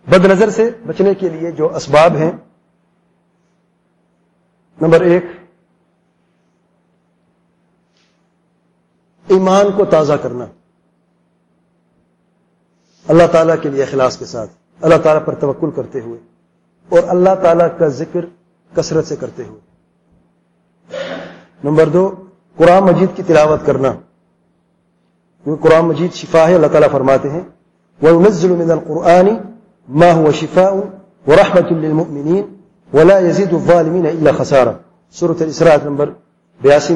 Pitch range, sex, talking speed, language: 155-185 Hz, male, 110 wpm, English